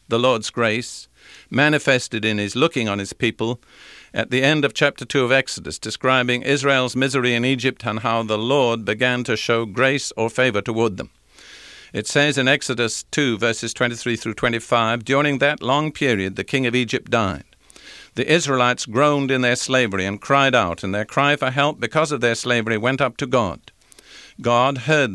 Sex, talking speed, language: male, 185 wpm, English